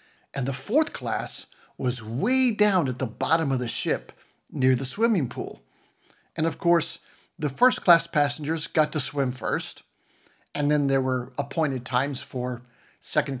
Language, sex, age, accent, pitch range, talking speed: English, male, 60-79, American, 130-180 Hz, 160 wpm